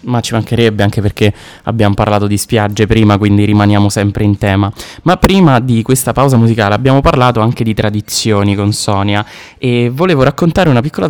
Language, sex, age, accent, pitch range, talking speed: Italian, male, 20-39, native, 100-115 Hz, 180 wpm